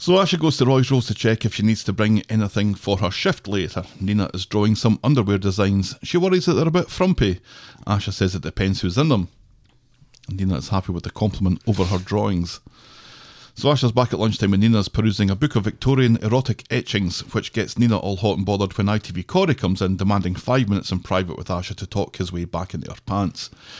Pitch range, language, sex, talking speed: 95-125 Hz, English, male, 220 wpm